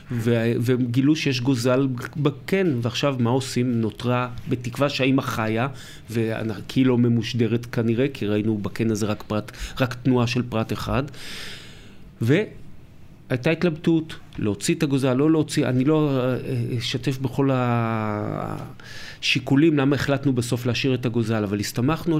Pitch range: 120-155 Hz